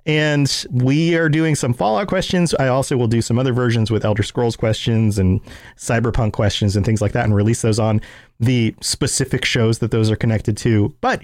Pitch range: 115-175 Hz